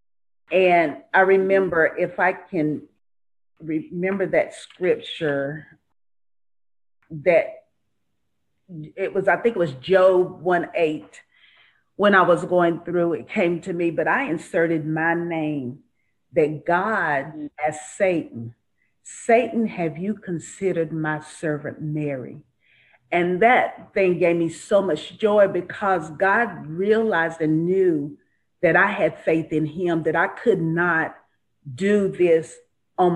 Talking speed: 125 wpm